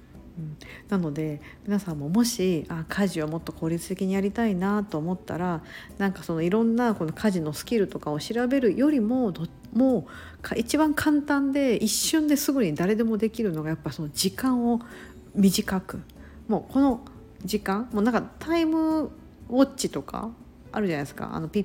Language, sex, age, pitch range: Japanese, female, 50-69, 160-235 Hz